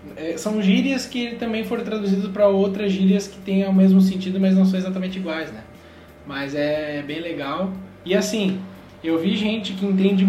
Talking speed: 180 wpm